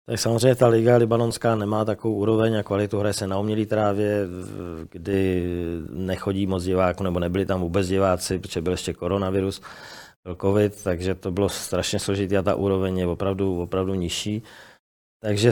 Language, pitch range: Czech, 90-100 Hz